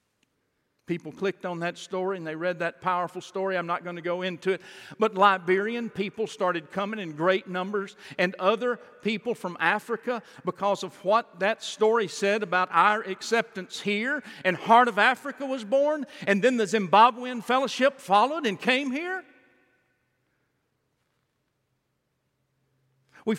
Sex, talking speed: male, 145 wpm